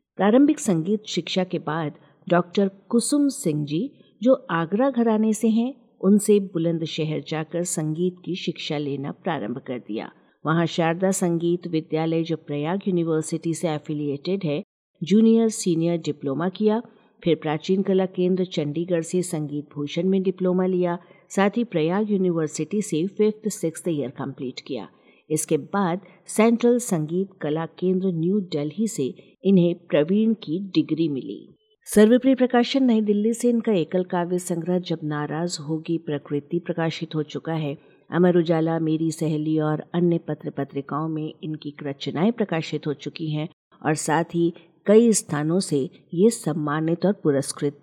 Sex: female